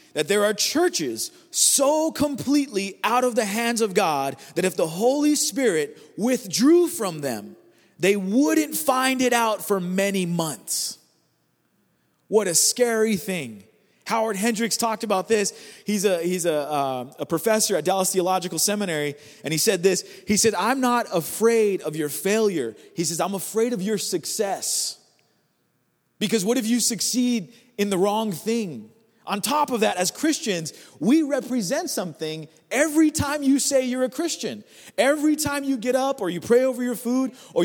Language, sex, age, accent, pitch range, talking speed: English, male, 30-49, American, 195-285 Hz, 165 wpm